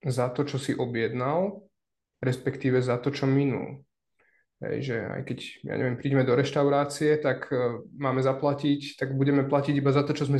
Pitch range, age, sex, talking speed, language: 130-145 Hz, 20-39, male, 165 wpm, Slovak